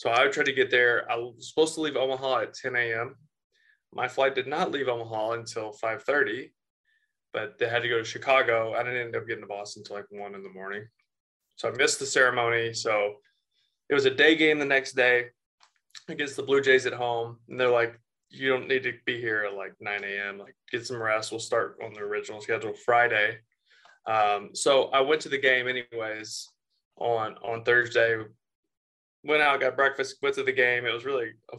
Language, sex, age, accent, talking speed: English, male, 20-39, American, 210 wpm